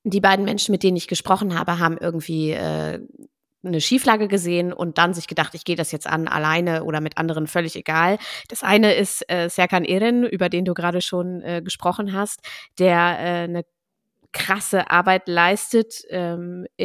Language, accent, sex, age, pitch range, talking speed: German, German, female, 20-39, 175-210 Hz, 180 wpm